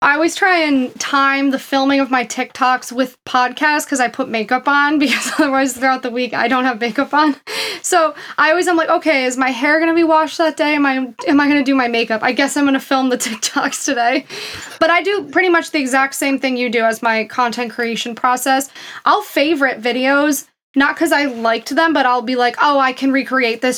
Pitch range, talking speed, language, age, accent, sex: 245-295 Hz, 230 wpm, English, 20-39, American, female